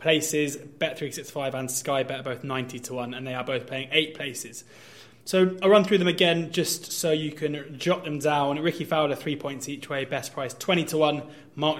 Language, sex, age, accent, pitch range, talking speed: English, male, 20-39, British, 135-155 Hz, 210 wpm